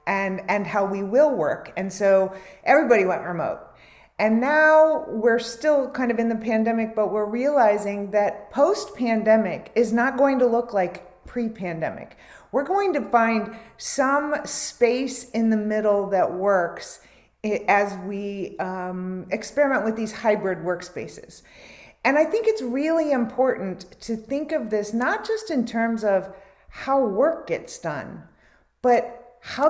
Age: 40-59